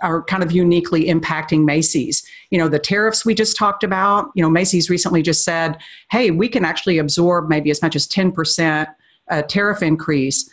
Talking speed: 180 wpm